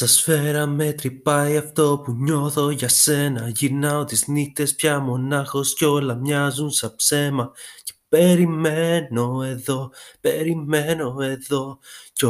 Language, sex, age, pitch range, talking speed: Greek, male, 20-39, 130-170 Hz, 120 wpm